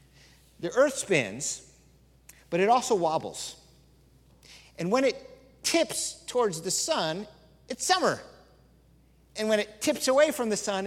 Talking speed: 135 wpm